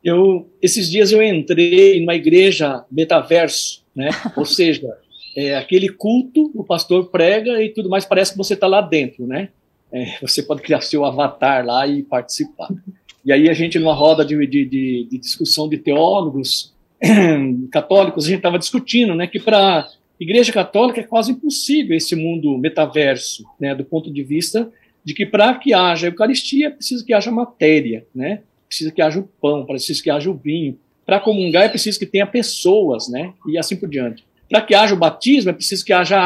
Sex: male